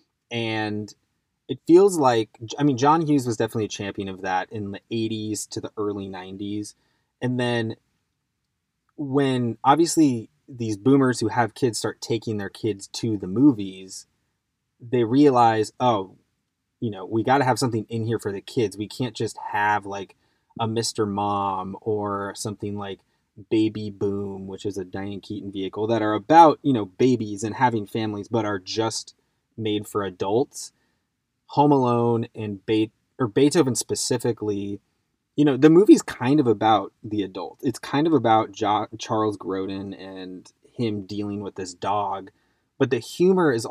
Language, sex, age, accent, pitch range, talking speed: English, male, 20-39, American, 105-125 Hz, 160 wpm